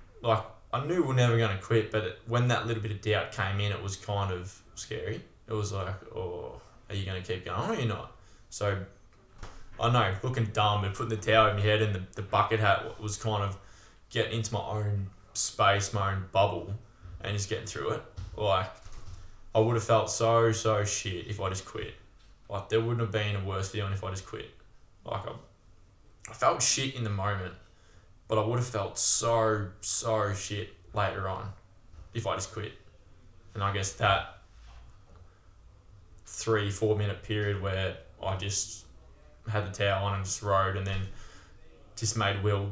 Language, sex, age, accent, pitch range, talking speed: English, male, 10-29, Australian, 95-110 Hz, 195 wpm